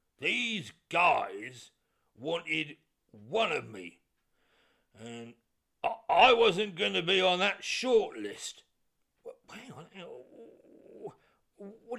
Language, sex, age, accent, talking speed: English, male, 50-69, British, 100 wpm